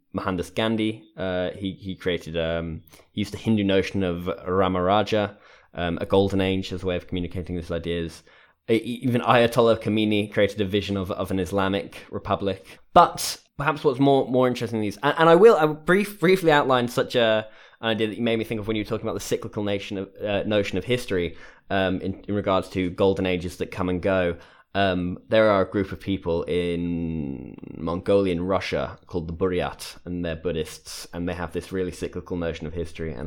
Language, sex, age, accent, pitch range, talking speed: English, male, 10-29, British, 85-105 Hz, 200 wpm